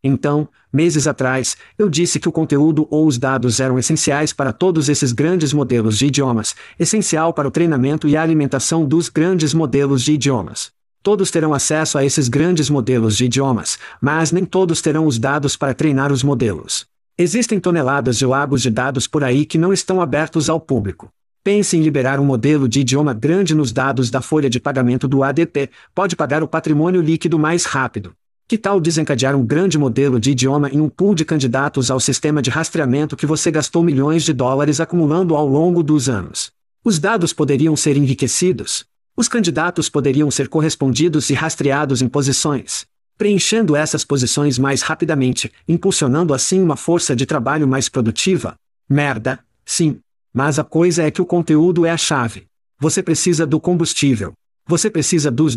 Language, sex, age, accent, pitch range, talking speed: Portuguese, male, 50-69, Brazilian, 135-165 Hz, 175 wpm